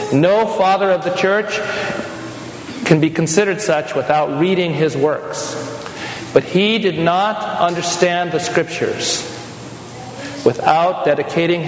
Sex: male